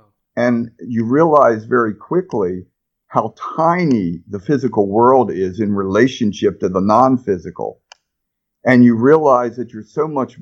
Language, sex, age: English, male, 50-69